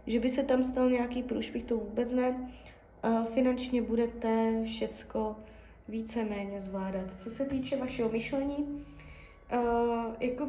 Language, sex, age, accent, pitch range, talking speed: Czech, female, 20-39, native, 220-250 Hz, 130 wpm